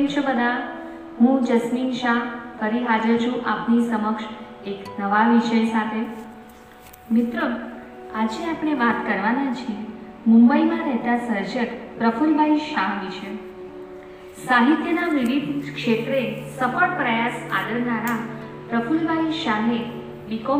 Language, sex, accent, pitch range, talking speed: Gujarati, female, native, 225-275 Hz, 105 wpm